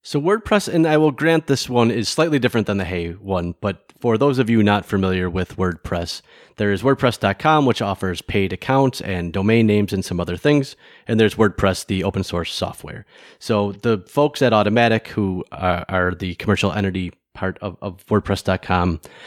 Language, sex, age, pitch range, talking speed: English, male, 30-49, 95-125 Hz, 180 wpm